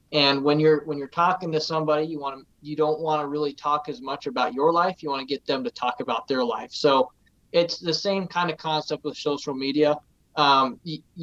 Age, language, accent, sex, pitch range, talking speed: 20-39, English, American, male, 135-160 Hz, 235 wpm